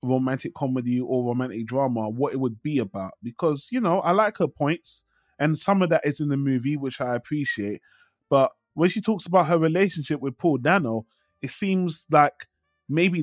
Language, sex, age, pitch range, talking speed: English, male, 20-39, 135-175 Hz, 190 wpm